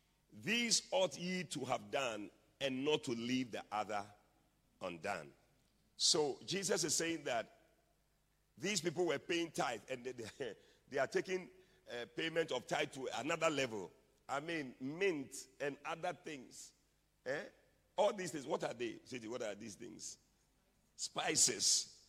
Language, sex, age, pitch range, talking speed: English, male, 50-69, 130-190 Hz, 145 wpm